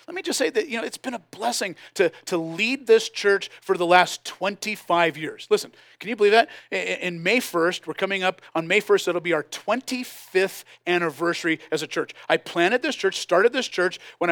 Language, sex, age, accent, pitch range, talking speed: English, male, 40-59, American, 175-245 Hz, 215 wpm